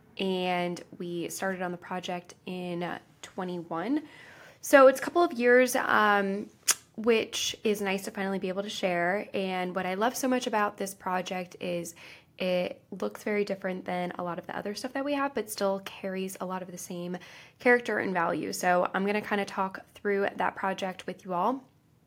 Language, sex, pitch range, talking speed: English, female, 175-210 Hz, 195 wpm